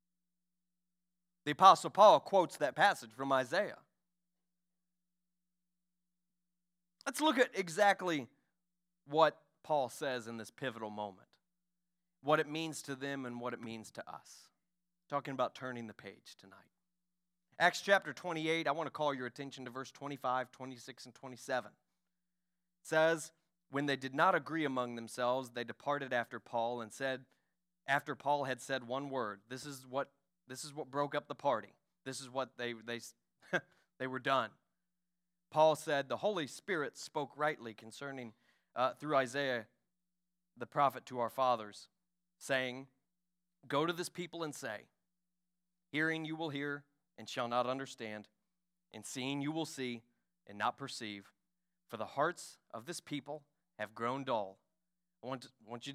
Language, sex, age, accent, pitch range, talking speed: English, male, 30-49, American, 125-180 Hz, 155 wpm